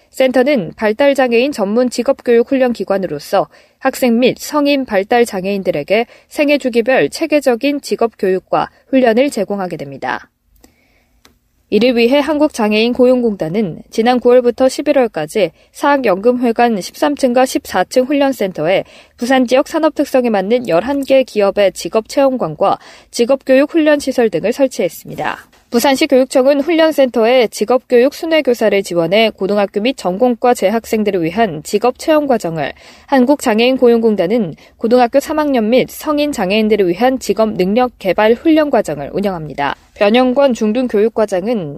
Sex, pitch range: female, 200-270 Hz